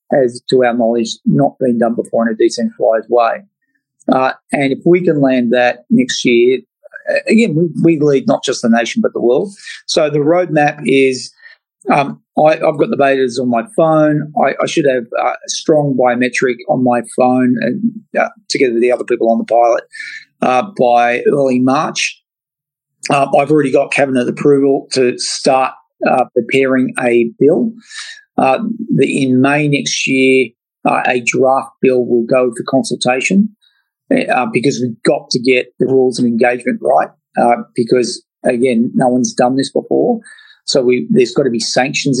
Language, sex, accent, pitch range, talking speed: English, male, Australian, 125-155 Hz, 175 wpm